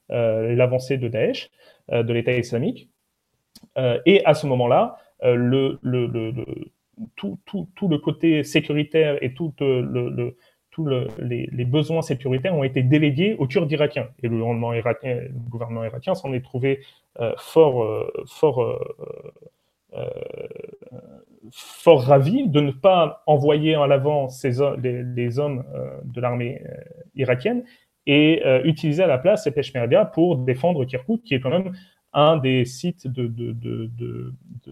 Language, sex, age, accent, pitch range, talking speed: French, male, 30-49, French, 125-170 Hz, 160 wpm